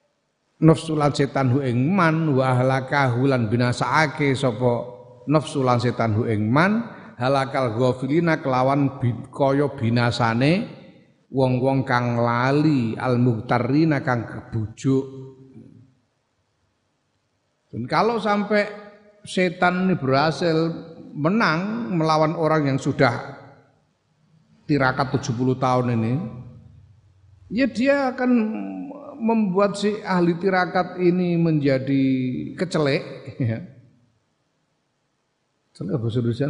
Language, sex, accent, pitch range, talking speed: Indonesian, male, native, 120-160 Hz, 85 wpm